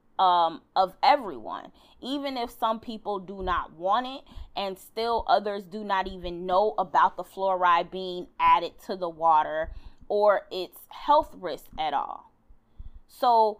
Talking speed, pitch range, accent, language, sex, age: 145 wpm, 185-235 Hz, American, English, female, 20-39